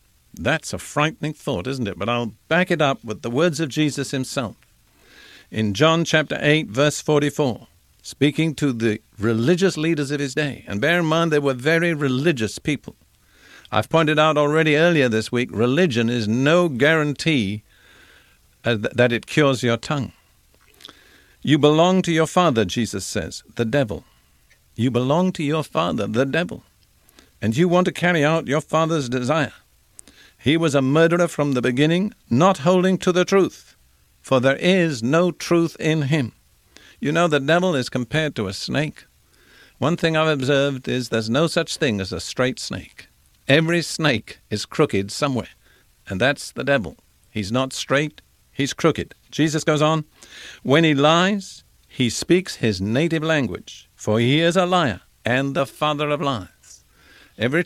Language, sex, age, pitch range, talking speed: English, male, 50-69, 120-160 Hz, 165 wpm